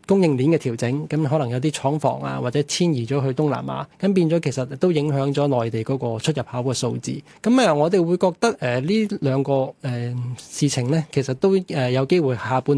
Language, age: Chinese, 20-39